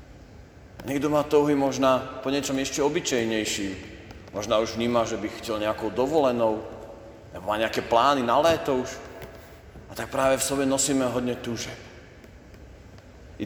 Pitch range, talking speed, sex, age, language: 110-140 Hz, 145 wpm, male, 40-59, Slovak